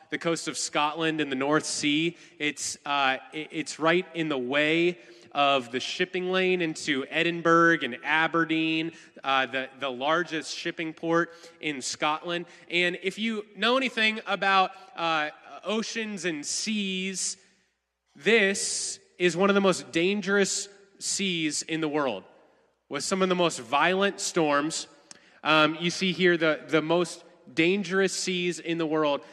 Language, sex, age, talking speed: English, male, 20-39, 145 wpm